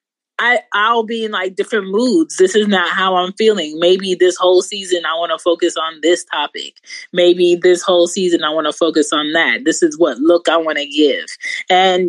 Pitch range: 165-195 Hz